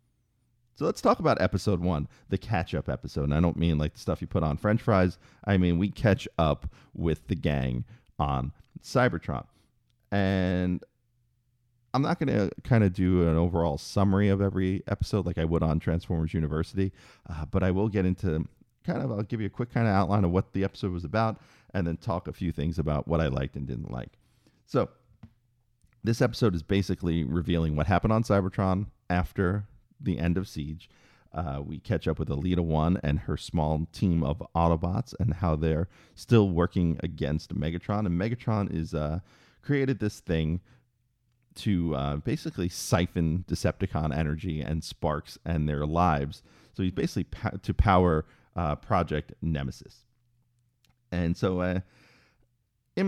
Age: 40-59